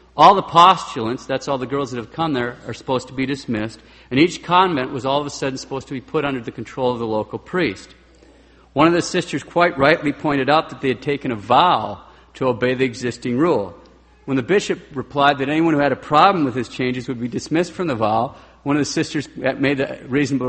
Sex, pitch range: male, 120-155 Hz